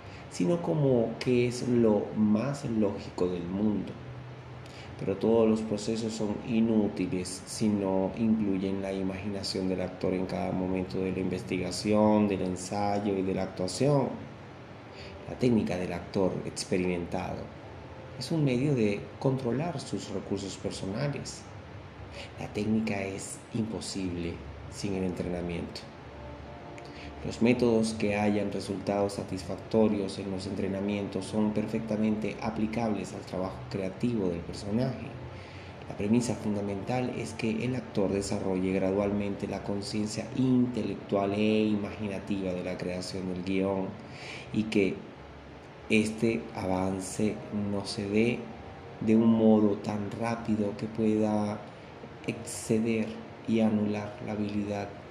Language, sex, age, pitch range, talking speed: Spanish, male, 30-49, 95-115 Hz, 120 wpm